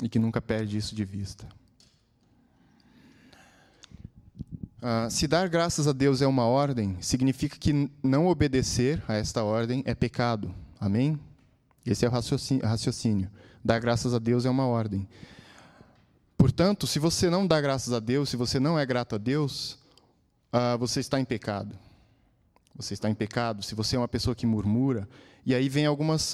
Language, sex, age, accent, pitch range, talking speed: Portuguese, male, 20-39, Brazilian, 110-135 Hz, 165 wpm